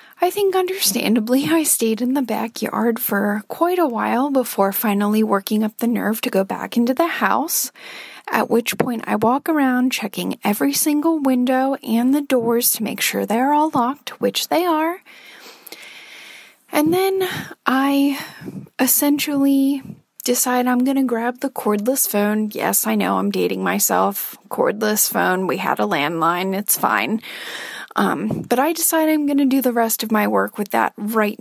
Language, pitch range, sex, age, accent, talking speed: English, 210-275 Hz, female, 30-49, American, 170 wpm